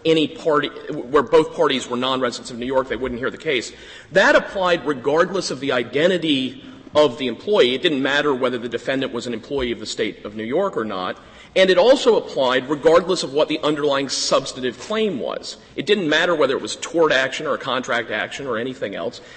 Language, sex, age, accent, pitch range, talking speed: English, male, 40-59, American, 125-180 Hz, 210 wpm